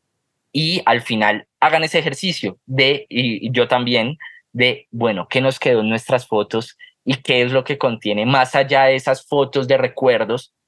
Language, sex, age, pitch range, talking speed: Spanish, male, 20-39, 120-160 Hz, 175 wpm